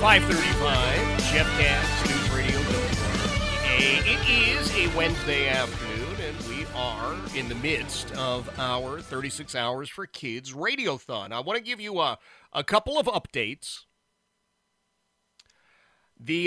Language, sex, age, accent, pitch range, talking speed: English, male, 40-59, American, 125-175 Hz, 125 wpm